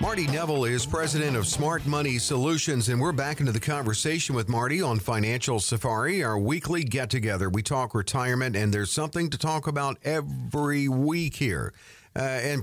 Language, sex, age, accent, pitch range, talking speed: English, male, 50-69, American, 110-145 Hz, 170 wpm